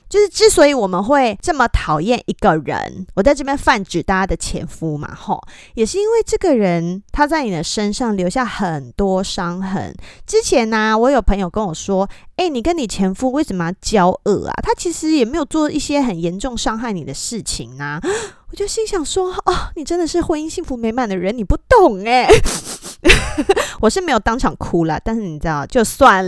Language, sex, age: Chinese, female, 20-39